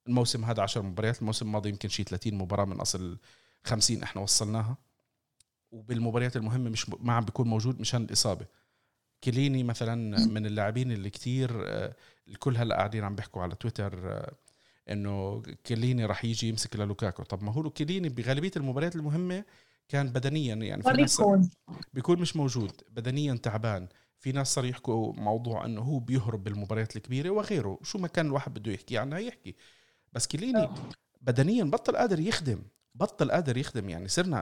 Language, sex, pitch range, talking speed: Arabic, male, 110-145 Hz, 155 wpm